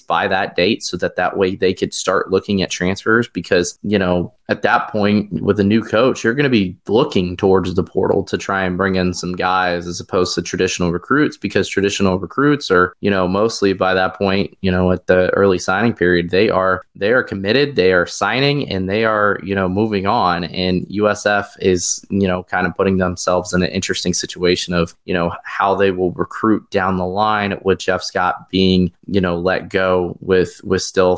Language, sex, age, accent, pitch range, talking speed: English, male, 20-39, American, 90-105 Hz, 210 wpm